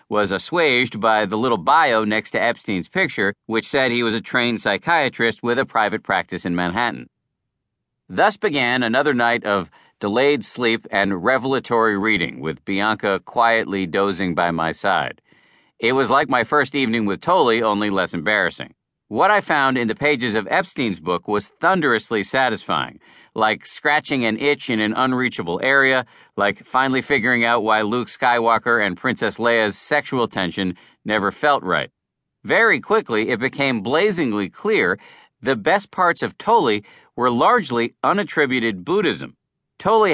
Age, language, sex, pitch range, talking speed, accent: 50-69, English, male, 105-130 Hz, 150 wpm, American